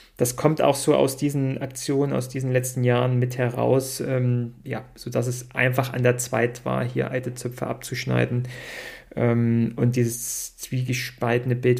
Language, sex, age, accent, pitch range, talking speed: German, male, 40-59, German, 120-130 Hz, 160 wpm